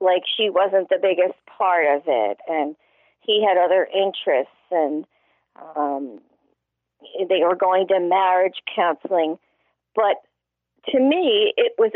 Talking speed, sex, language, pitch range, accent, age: 130 wpm, female, English, 170-250 Hz, American, 50-69